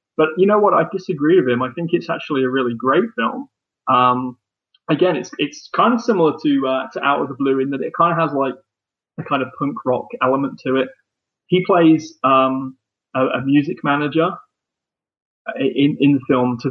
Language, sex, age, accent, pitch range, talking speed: English, male, 20-39, British, 125-145 Hz, 205 wpm